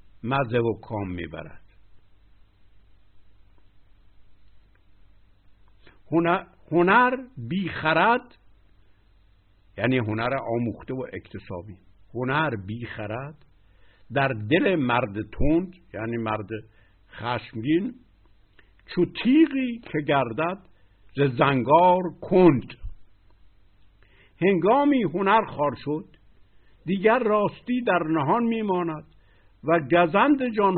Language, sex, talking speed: Persian, male, 80 wpm